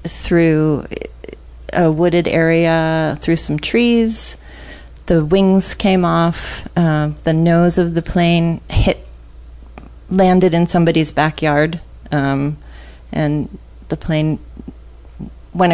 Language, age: English, 30-49